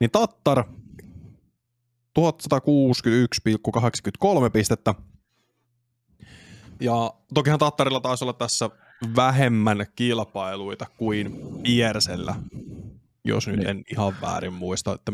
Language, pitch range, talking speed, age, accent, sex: Finnish, 105-125 Hz, 85 wpm, 20-39, native, male